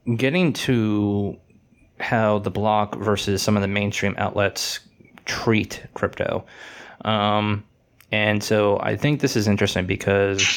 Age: 20-39